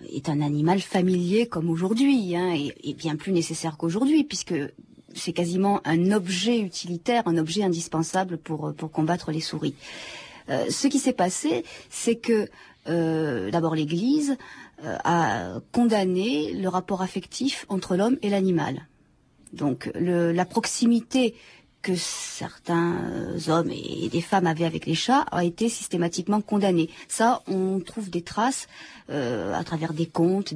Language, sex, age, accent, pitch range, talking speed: French, female, 40-59, French, 170-215 Hz, 145 wpm